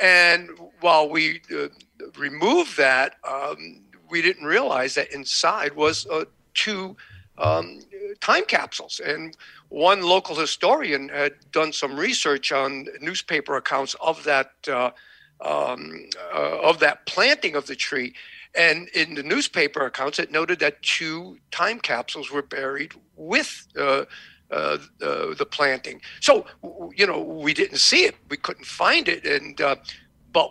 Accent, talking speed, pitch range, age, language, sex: American, 145 wpm, 145-190 Hz, 60-79, English, male